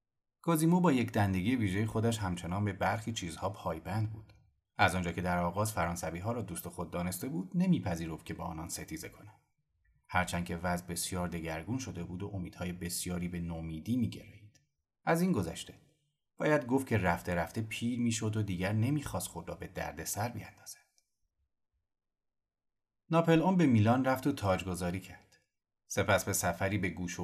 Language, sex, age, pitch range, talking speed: Persian, male, 30-49, 90-115 Hz, 165 wpm